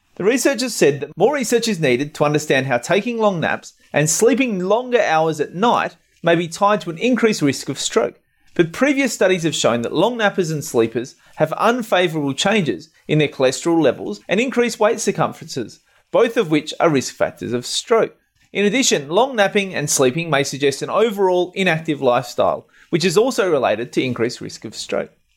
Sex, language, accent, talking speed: male, English, Australian, 185 wpm